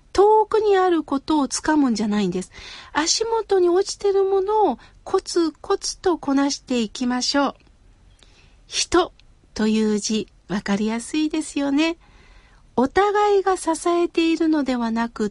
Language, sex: Japanese, female